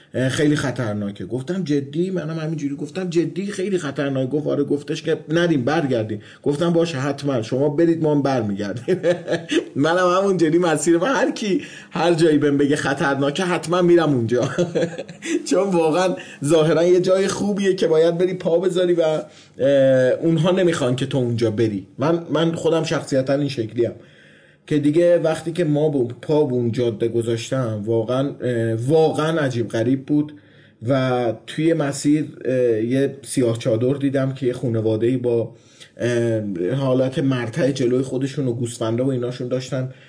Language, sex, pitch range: Persian, male, 125-165 Hz